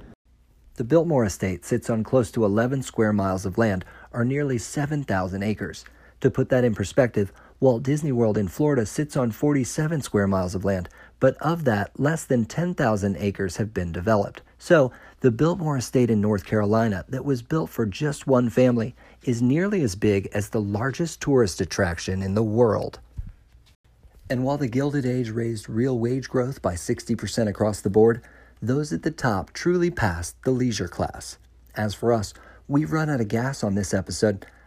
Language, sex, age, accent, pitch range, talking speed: English, male, 40-59, American, 100-135 Hz, 180 wpm